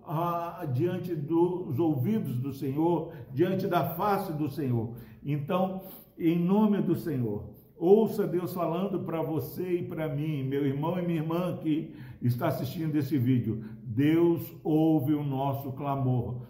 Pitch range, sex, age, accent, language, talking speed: 150-195 Hz, male, 60-79, Brazilian, Portuguese, 140 wpm